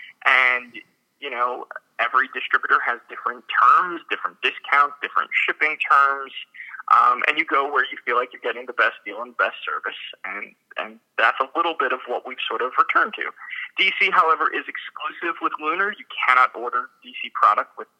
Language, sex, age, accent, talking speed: English, male, 30-49, American, 180 wpm